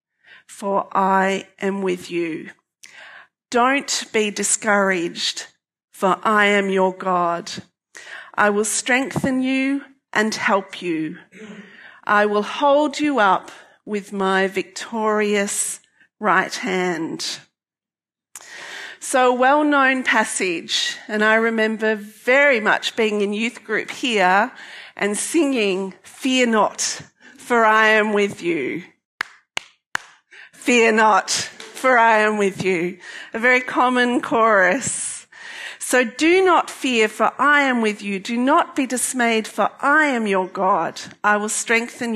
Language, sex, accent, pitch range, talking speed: English, female, Australian, 205-270 Hz, 120 wpm